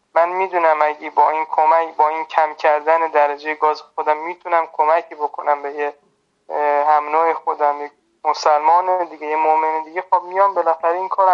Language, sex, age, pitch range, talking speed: Persian, male, 20-39, 150-180 Hz, 160 wpm